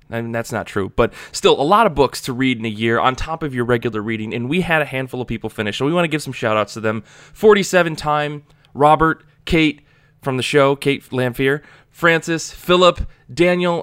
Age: 20-39